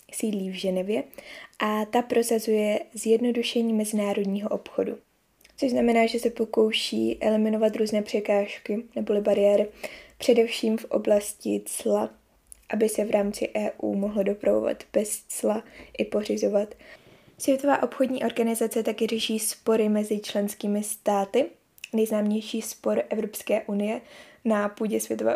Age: 20-39